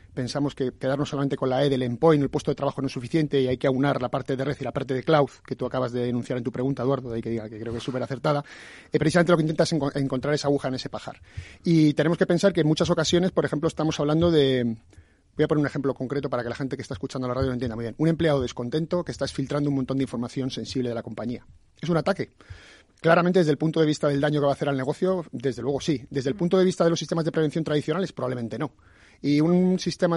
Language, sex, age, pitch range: Spanish, male, 30-49, 130-155 Hz